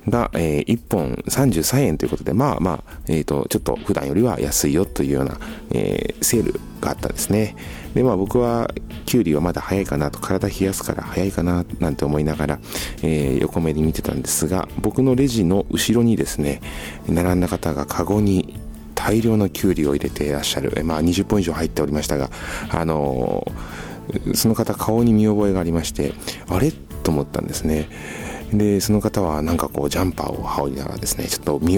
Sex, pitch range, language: male, 75-105 Hz, Japanese